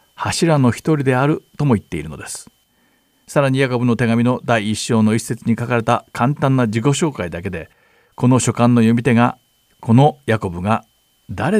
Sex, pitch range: male, 110-145 Hz